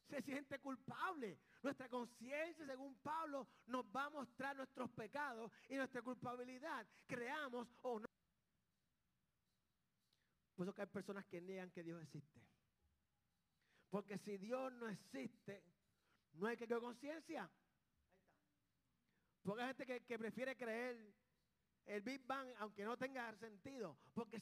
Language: Spanish